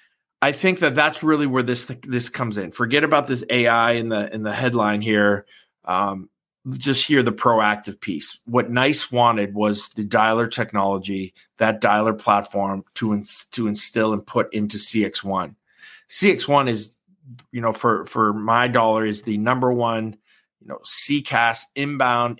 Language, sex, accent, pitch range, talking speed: English, male, American, 105-125 Hz, 170 wpm